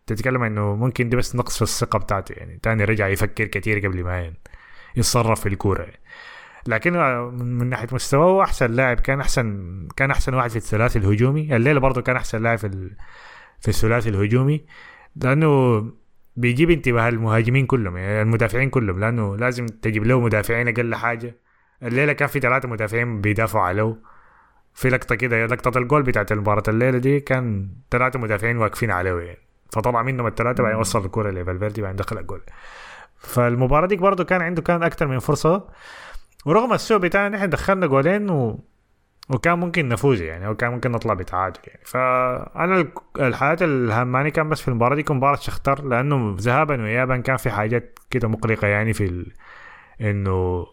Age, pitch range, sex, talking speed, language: 20-39, 105-130 Hz, male, 165 wpm, Arabic